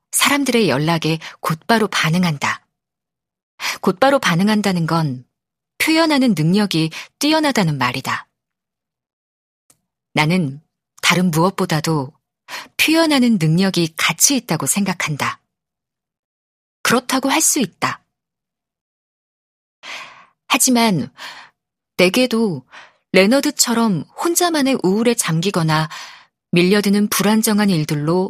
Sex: female